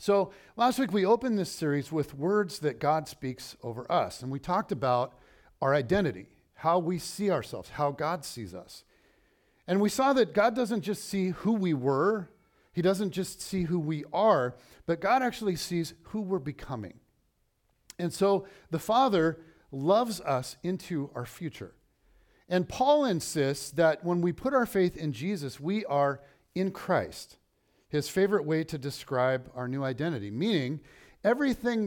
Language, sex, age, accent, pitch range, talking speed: English, male, 50-69, American, 145-205 Hz, 165 wpm